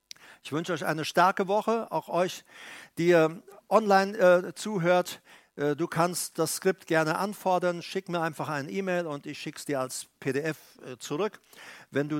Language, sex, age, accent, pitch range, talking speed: German, male, 60-79, German, 140-180 Hz, 170 wpm